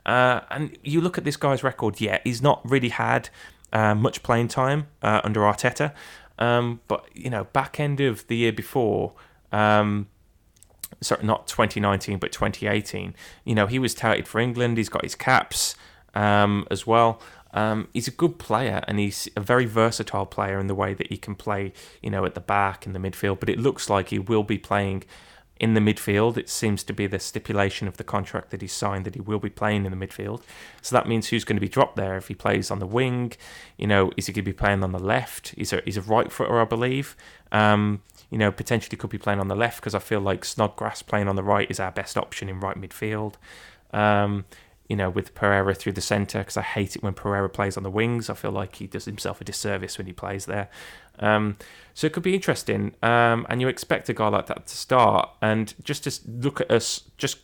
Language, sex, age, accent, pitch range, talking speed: English, male, 20-39, British, 100-115 Hz, 230 wpm